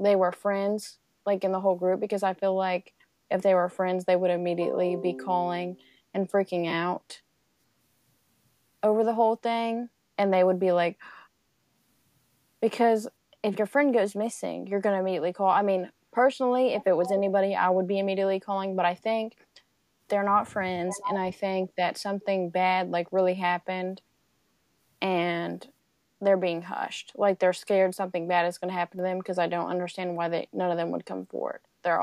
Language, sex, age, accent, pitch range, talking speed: English, female, 20-39, American, 175-195 Hz, 185 wpm